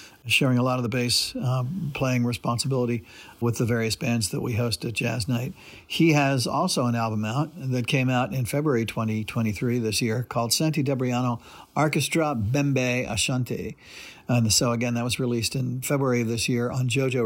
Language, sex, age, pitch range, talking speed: English, male, 50-69, 115-135 Hz, 180 wpm